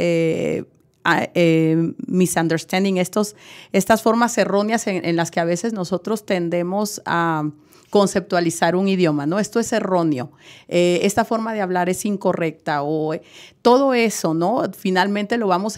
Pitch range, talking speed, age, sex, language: 170-210 Hz, 140 wpm, 40-59, female, Spanish